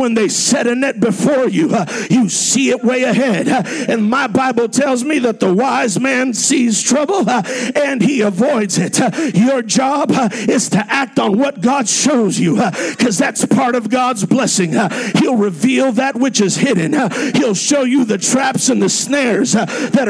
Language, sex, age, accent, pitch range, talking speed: English, male, 50-69, American, 220-270 Hz, 200 wpm